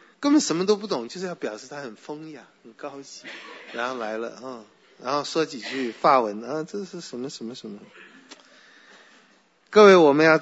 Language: Chinese